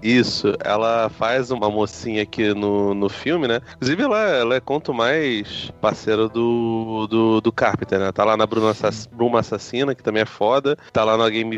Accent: Brazilian